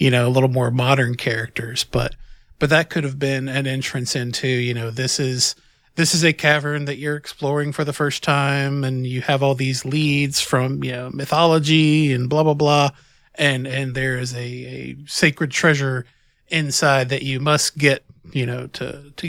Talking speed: 195 wpm